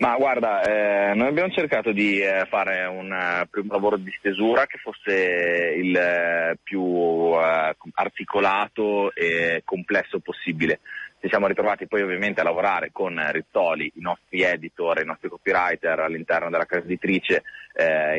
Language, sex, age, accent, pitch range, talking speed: Italian, male, 30-49, native, 85-100 Hz, 145 wpm